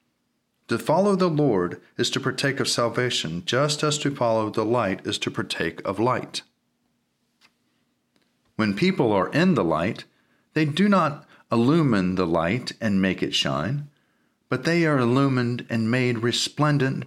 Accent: American